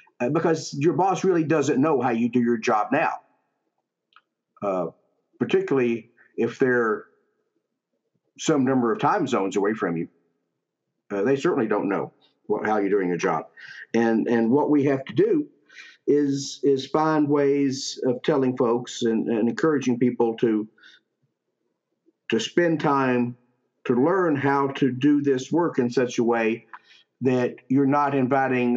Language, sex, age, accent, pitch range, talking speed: English, male, 50-69, American, 125-150 Hz, 150 wpm